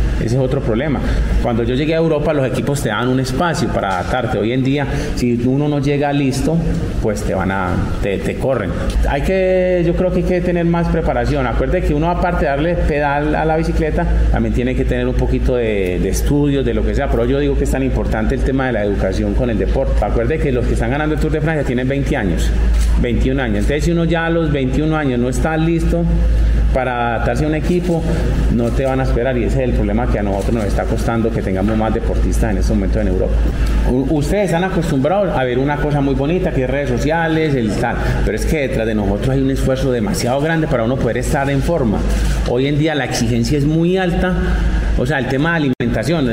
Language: English